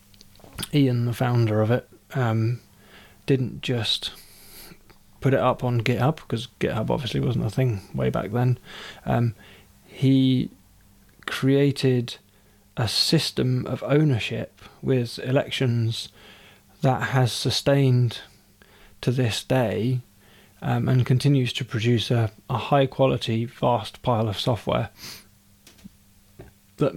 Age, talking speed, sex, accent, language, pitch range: 20-39, 110 wpm, male, British, English, 100-130 Hz